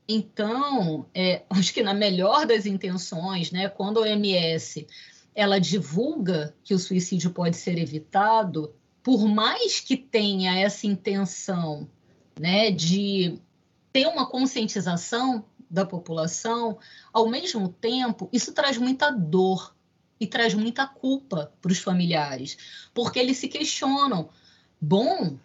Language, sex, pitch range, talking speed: Portuguese, female, 185-245 Hz, 120 wpm